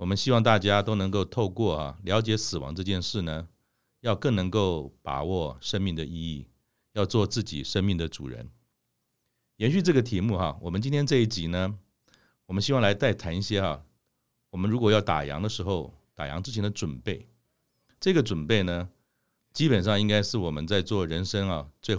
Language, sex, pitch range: Chinese, male, 85-115 Hz